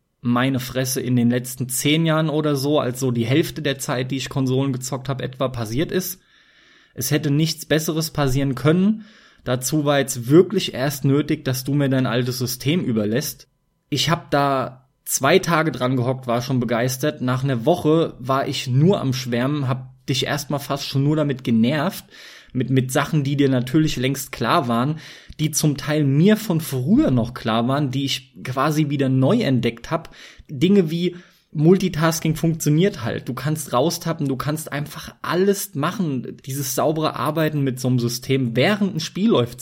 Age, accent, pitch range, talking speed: 20-39, German, 125-160 Hz, 175 wpm